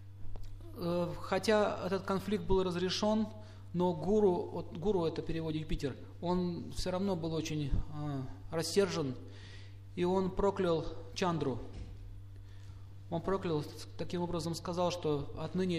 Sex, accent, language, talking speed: male, native, Russian, 105 wpm